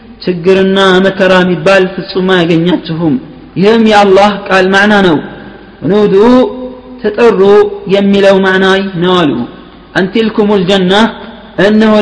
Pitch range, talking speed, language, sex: 190-225 Hz, 105 wpm, Amharic, male